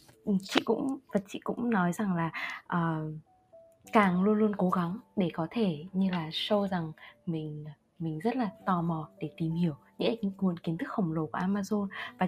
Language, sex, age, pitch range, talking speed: Vietnamese, female, 20-39, 175-230 Hz, 185 wpm